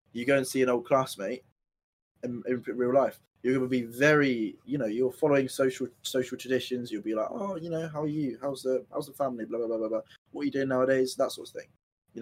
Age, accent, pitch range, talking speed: 20-39, British, 115-140 Hz, 255 wpm